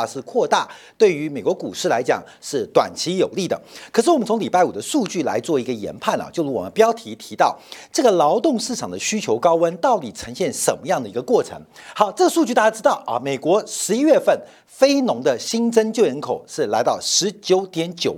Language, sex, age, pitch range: Chinese, male, 50-69, 195-315 Hz